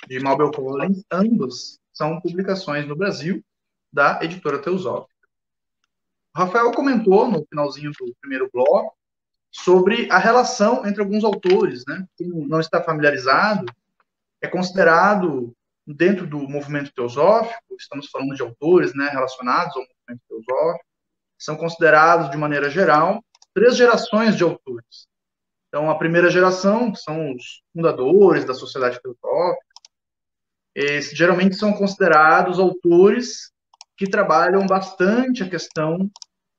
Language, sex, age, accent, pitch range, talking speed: Portuguese, male, 20-39, Brazilian, 150-205 Hz, 120 wpm